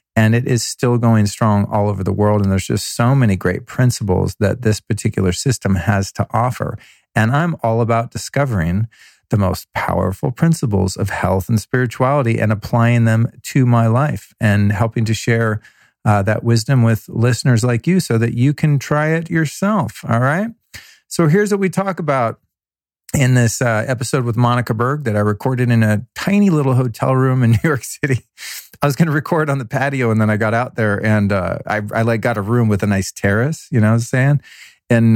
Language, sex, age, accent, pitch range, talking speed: English, male, 40-59, American, 105-135 Hz, 205 wpm